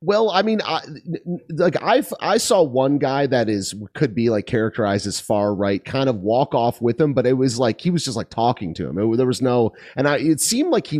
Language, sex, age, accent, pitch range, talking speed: English, male, 30-49, American, 110-150 Hz, 250 wpm